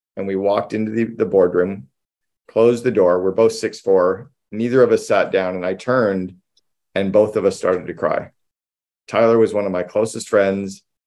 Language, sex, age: English, male, 40-59